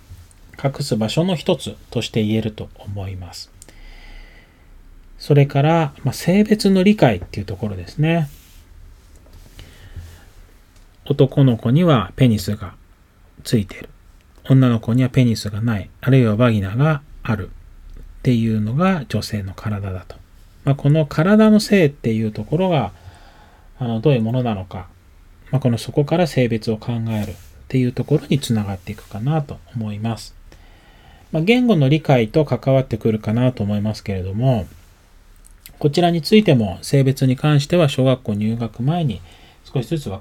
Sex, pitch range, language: male, 95-140 Hz, Japanese